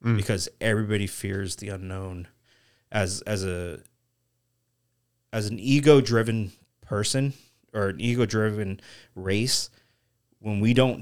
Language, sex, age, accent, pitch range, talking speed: English, male, 30-49, American, 95-120 Hz, 110 wpm